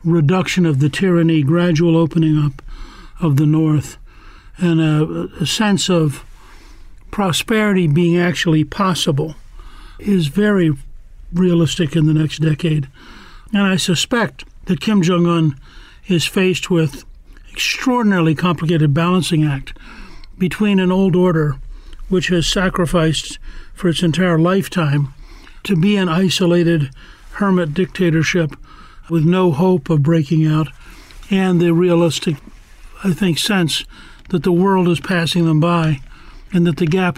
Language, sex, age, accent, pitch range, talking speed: English, male, 60-79, American, 155-180 Hz, 130 wpm